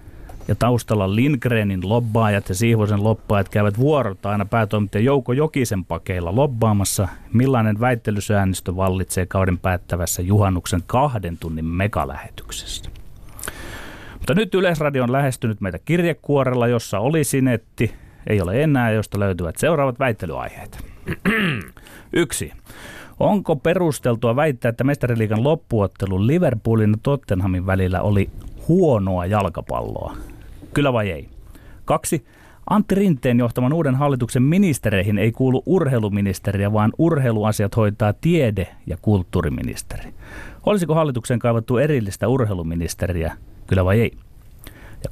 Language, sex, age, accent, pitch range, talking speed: Finnish, male, 30-49, native, 100-130 Hz, 110 wpm